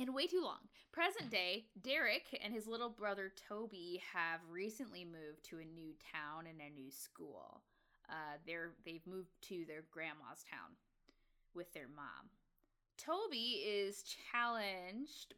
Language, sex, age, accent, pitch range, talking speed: English, female, 10-29, American, 160-215 Hz, 140 wpm